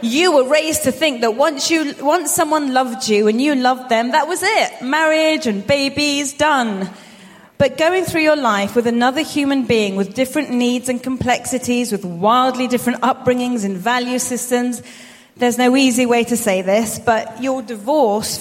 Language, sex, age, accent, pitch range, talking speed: English, female, 30-49, British, 200-260 Hz, 175 wpm